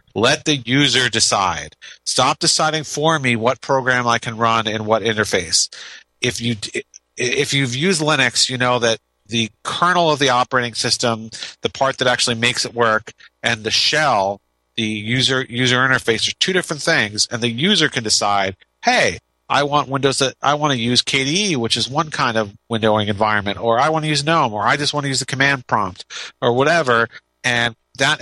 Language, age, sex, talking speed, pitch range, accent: English, 40-59, male, 190 wpm, 110-135 Hz, American